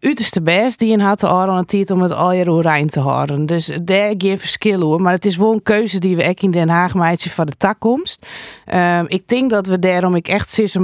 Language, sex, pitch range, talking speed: Dutch, female, 170-205 Hz, 250 wpm